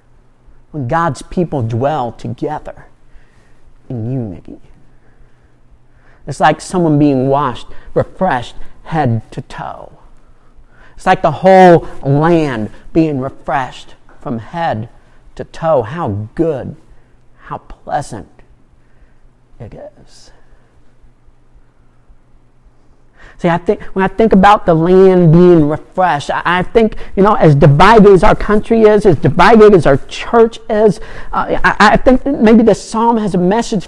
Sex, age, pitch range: male, 50-69, 130-210 Hz